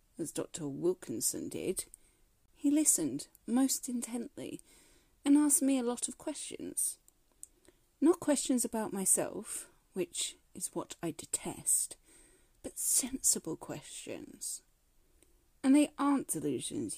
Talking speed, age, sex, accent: 110 wpm, 40-59, female, British